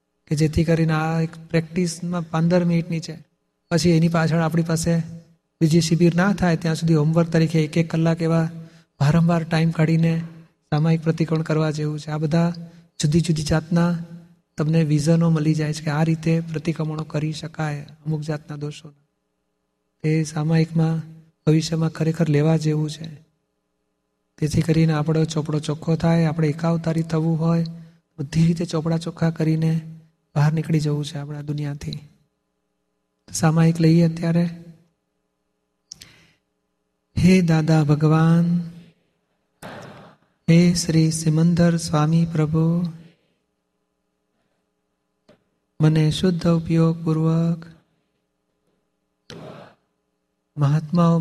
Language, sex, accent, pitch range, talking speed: Gujarati, male, native, 150-165 Hz, 115 wpm